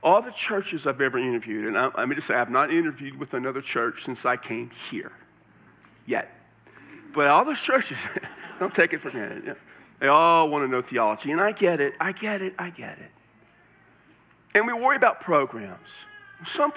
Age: 50-69